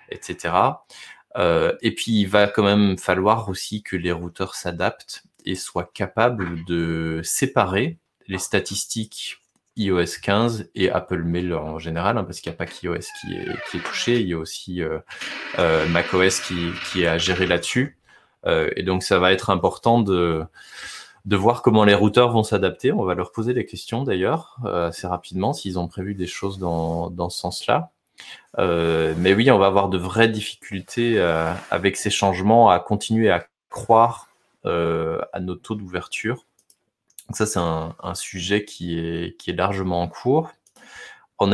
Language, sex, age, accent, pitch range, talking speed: French, male, 20-39, French, 90-110 Hz, 175 wpm